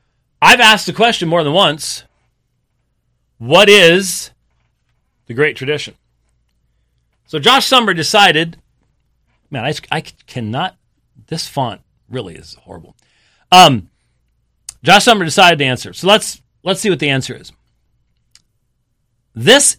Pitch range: 120-180 Hz